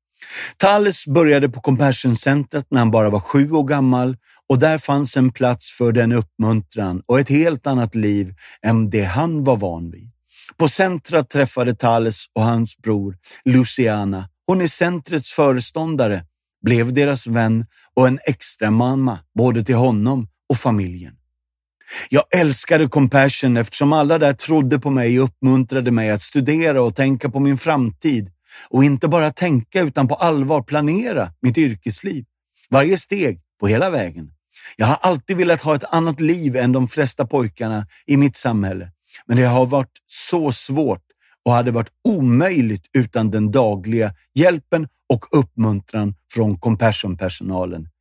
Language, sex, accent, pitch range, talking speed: Swedish, male, native, 110-145 Hz, 150 wpm